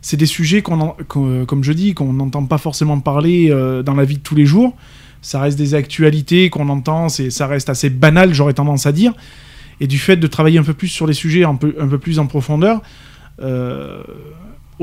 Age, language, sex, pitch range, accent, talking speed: 20-39, French, male, 140-170 Hz, French, 230 wpm